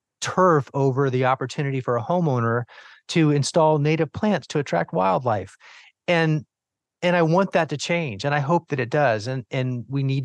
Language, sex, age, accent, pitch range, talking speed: English, male, 30-49, American, 120-150 Hz, 180 wpm